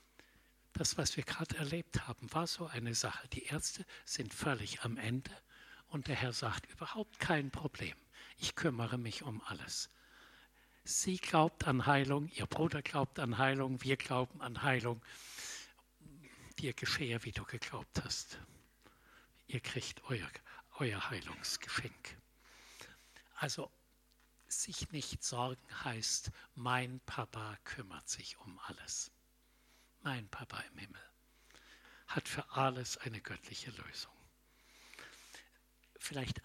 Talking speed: 120 wpm